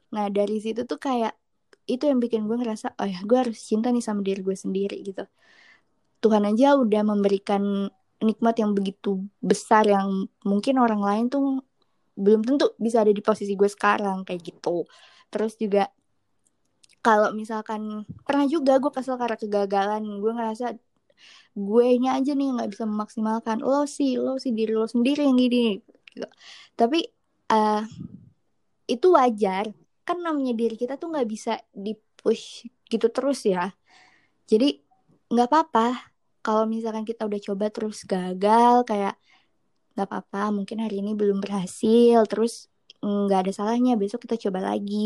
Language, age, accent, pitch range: Indonesian, 20-39, native, 205-240 Hz